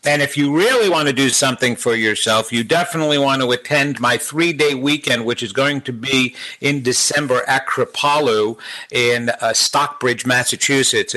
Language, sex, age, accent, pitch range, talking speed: English, male, 50-69, American, 125-150 Hz, 165 wpm